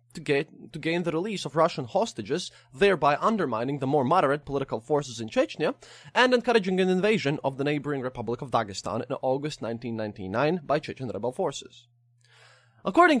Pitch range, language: 120-180 Hz, English